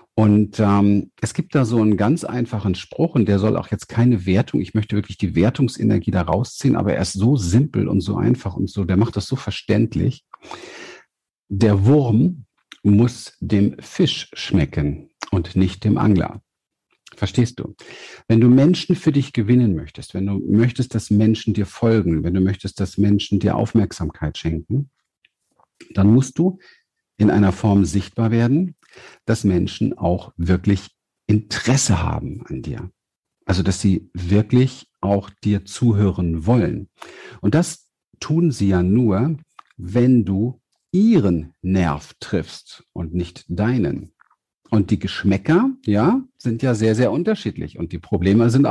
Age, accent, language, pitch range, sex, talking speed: 50-69, German, German, 95-125 Hz, male, 155 wpm